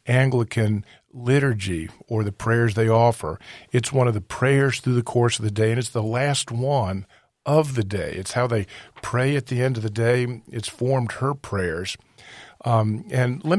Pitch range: 105-130 Hz